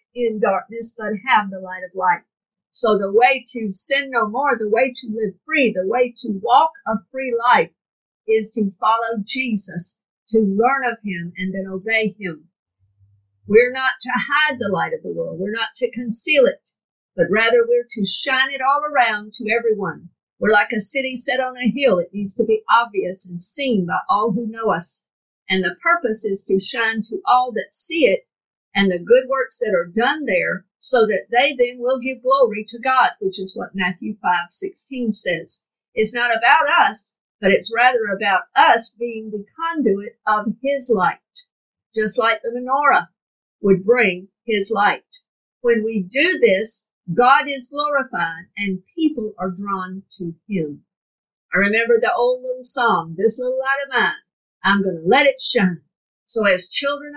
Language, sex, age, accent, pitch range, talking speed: English, female, 50-69, American, 200-265 Hz, 180 wpm